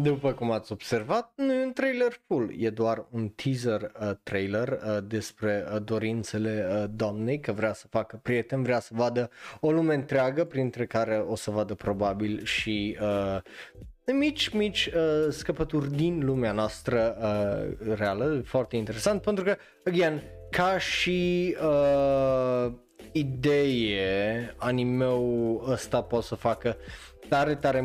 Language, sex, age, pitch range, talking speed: Romanian, male, 20-39, 110-140 Hz, 130 wpm